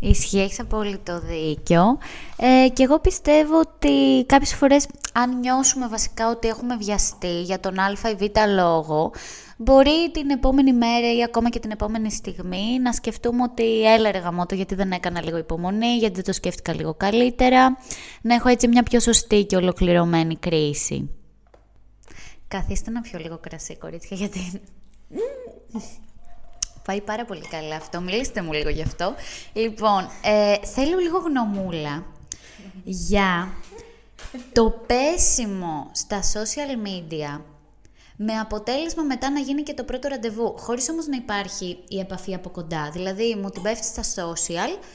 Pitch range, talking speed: 180-250 Hz, 145 wpm